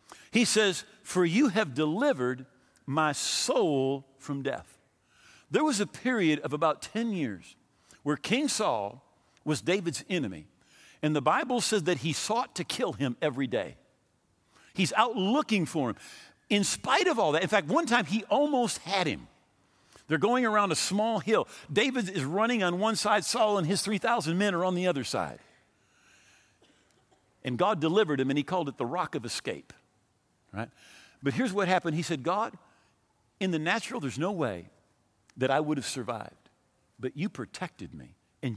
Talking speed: 175 wpm